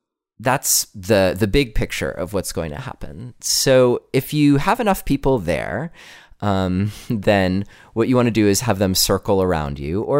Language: English